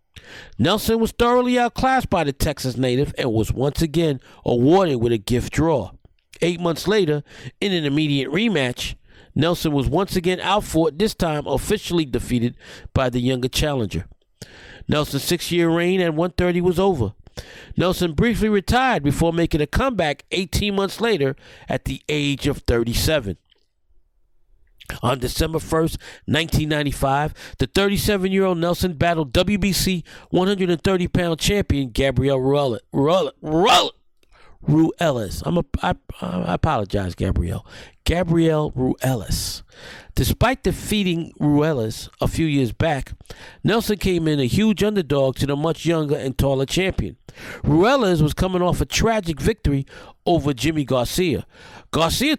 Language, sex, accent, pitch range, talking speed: English, male, American, 130-180 Hz, 135 wpm